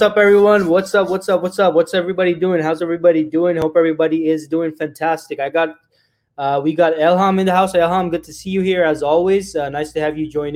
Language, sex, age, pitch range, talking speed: English, male, 20-39, 155-185 Hz, 245 wpm